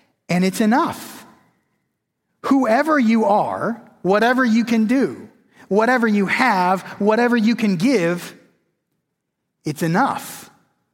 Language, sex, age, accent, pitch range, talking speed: English, male, 30-49, American, 180-235 Hz, 105 wpm